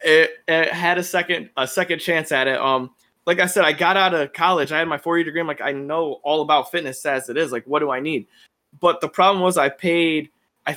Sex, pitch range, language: male, 145-175 Hz, English